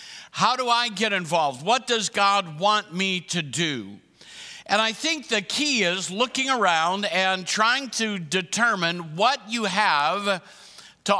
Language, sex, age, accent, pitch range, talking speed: English, male, 50-69, American, 175-215 Hz, 150 wpm